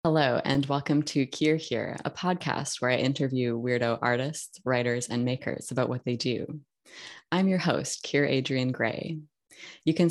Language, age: English, 20-39